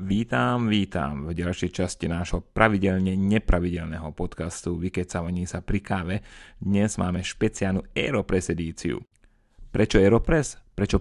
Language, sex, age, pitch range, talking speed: Slovak, male, 30-49, 85-110 Hz, 120 wpm